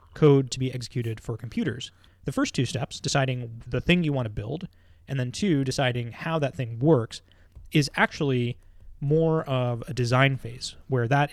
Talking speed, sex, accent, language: 180 wpm, male, American, English